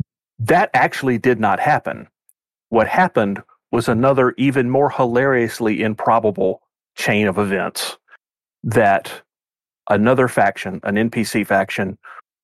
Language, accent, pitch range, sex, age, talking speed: English, American, 105-125 Hz, male, 40-59, 105 wpm